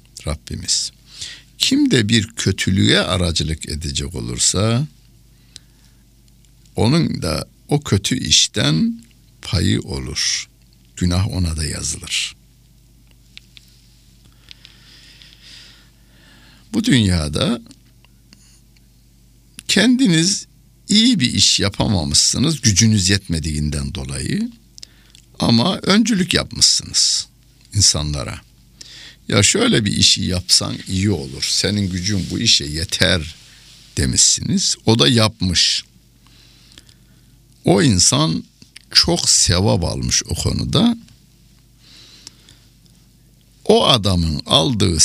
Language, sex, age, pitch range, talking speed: Turkish, male, 60-79, 75-115 Hz, 75 wpm